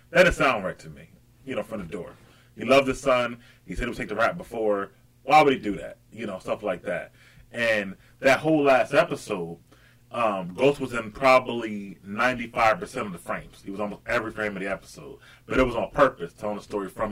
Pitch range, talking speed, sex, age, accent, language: 105-130 Hz, 225 wpm, male, 30-49, American, English